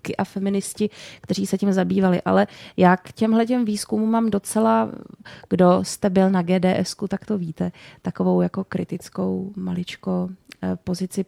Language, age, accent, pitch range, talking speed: Czech, 20-39, native, 180-200 Hz, 140 wpm